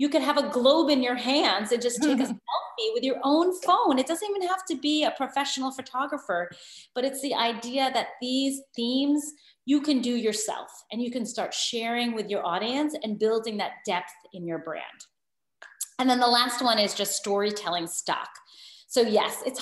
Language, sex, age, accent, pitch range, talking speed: English, female, 30-49, American, 215-285 Hz, 195 wpm